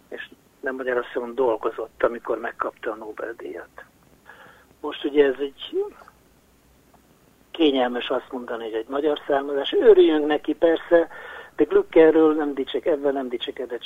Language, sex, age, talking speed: Hungarian, male, 60-79, 125 wpm